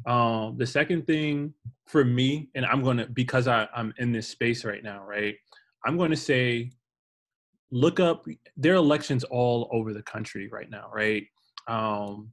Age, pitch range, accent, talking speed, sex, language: 20-39, 115-135 Hz, American, 160 wpm, male, English